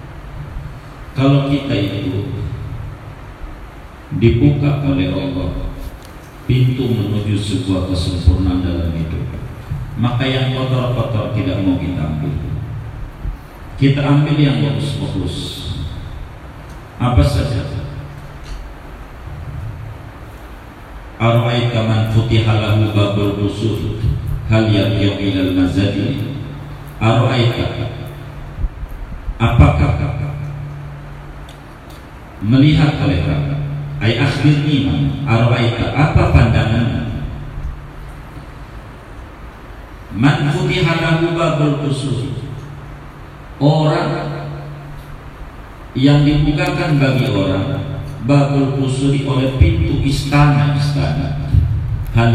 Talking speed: 65 wpm